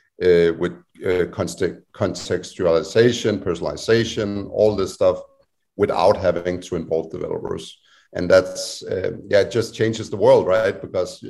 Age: 50-69